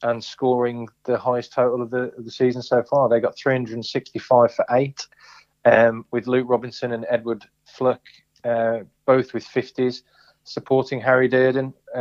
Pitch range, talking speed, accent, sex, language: 120-130 Hz, 160 wpm, British, male, English